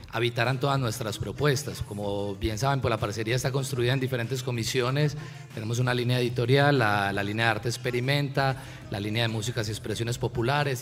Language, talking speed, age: Spanish, 175 wpm, 30-49